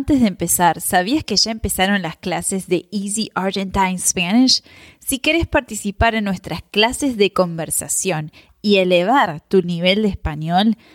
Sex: female